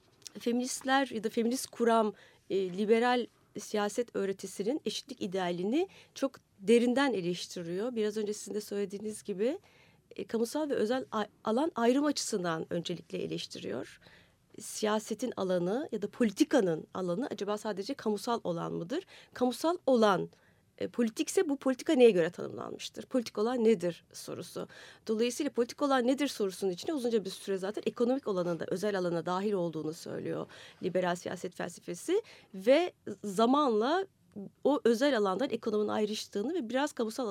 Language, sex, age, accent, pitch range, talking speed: Turkish, female, 30-49, native, 190-250 Hz, 130 wpm